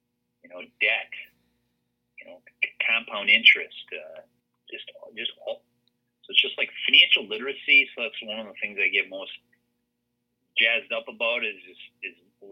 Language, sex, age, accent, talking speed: English, male, 30-49, American, 155 wpm